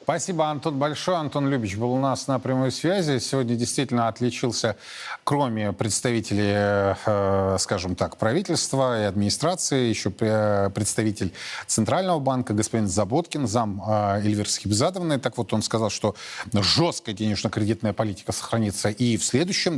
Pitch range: 110-155 Hz